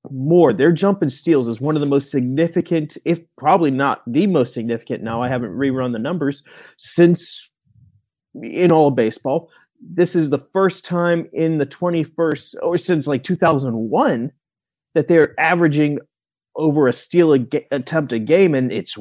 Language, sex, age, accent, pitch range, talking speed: English, male, 30-49, American, 120-155 Hz, 160 wpm